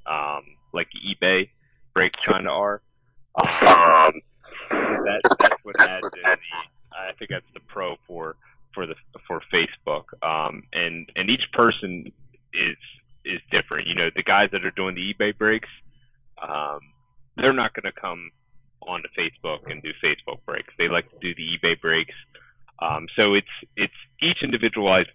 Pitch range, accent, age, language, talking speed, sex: 95-125 Hz, American, 30-49, English, 155 wpm, male